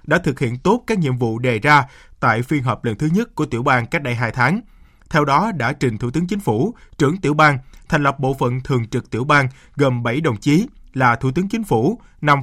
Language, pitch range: Vietnamese, 125-170 Hz